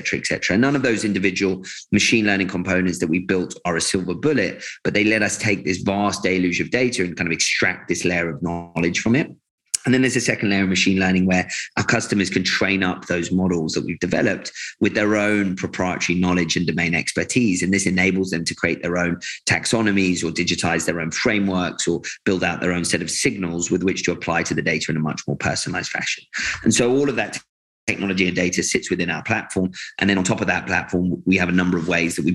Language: English